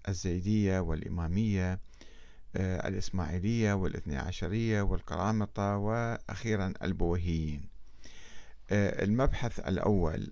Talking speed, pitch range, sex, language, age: 60 wpm, 95-125 Hz, male, Arabic, 50-69